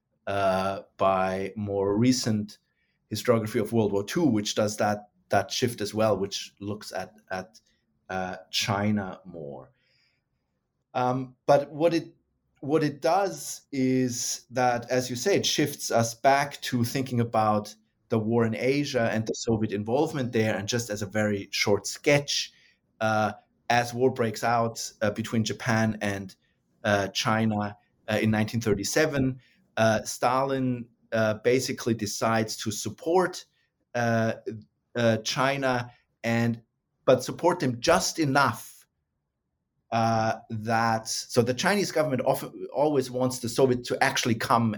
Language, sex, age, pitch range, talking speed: English, male, 30-49, 110-130 Hz, 135 wpm